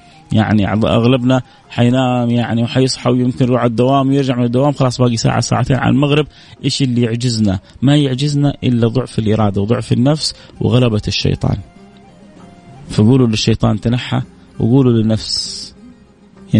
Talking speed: 130 wpm